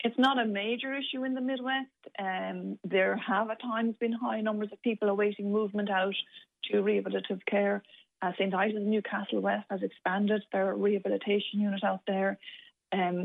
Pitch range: 185-215 Hz